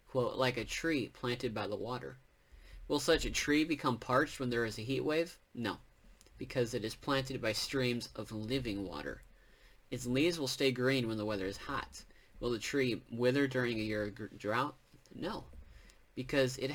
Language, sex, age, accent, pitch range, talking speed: English, male, 30-49, American, 105-135 Hz, 185 wpm